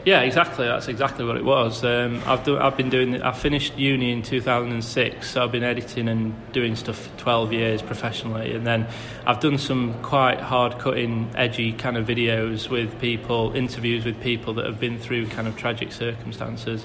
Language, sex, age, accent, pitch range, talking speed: English, male, 20-39, British, 115-130 Hz, 200 wpm